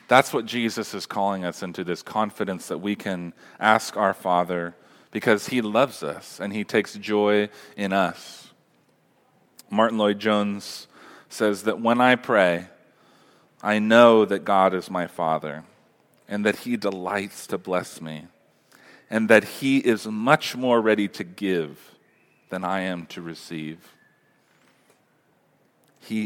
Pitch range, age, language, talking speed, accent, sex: 90-110 Hz, 40-59, English, 140 wpm, American, male